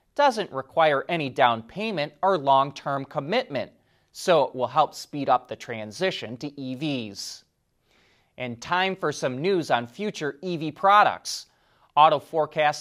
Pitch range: 130-180 Hz